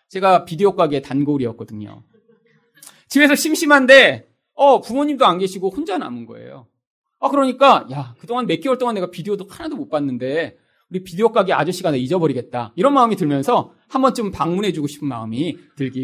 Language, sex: Korean, male